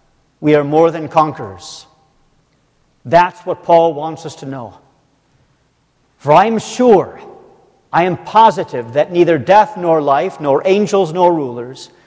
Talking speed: 140 wpm